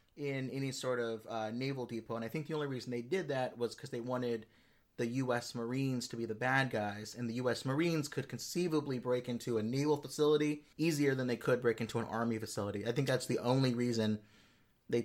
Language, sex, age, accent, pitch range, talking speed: English, male, 30-49, American, 115-140 Hz, 220 wpm